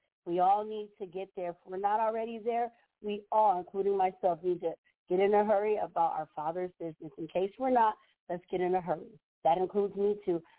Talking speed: 215 wpm